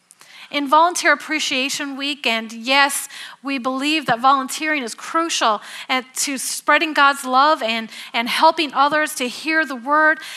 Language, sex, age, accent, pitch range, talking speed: English, female, 40-59, American, 270-330 Hz, 140 wpm